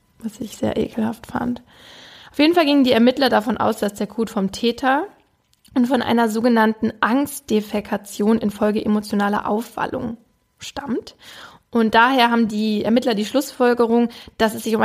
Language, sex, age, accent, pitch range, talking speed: German, female, 20-39, German, 210-245 Hz, 155 wpm